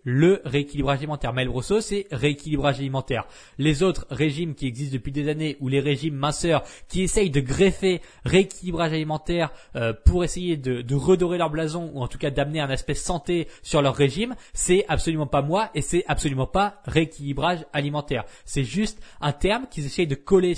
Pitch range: 135-180 Hz